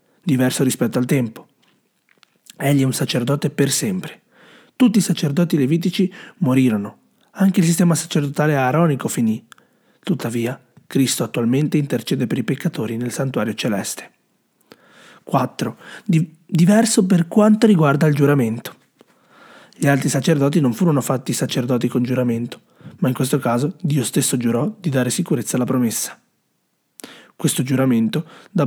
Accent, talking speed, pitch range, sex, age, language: native, 130 wpm, 125-170 Hz, male, 30-49, Italian